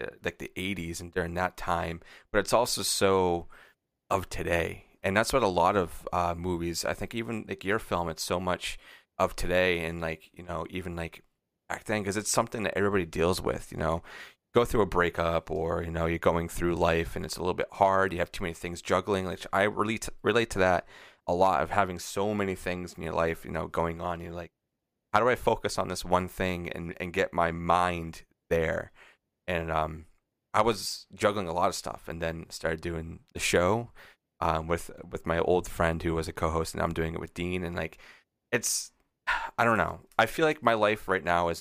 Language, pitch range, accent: English, 85-95 Hz, American